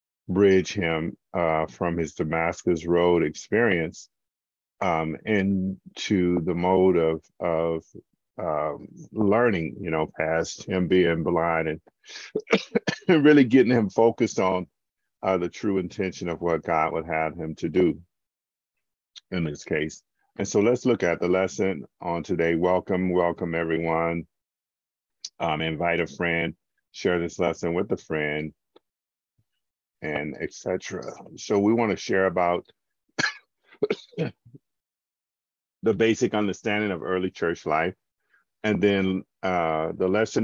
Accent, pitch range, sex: American, 80-100 Hz, male